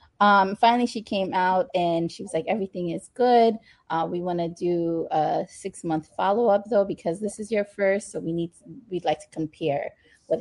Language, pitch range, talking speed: English, 170-225 Hz, 210 wpm